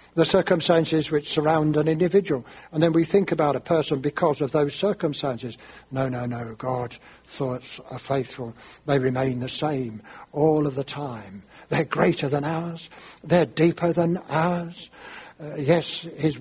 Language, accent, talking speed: English, British, 155 wpm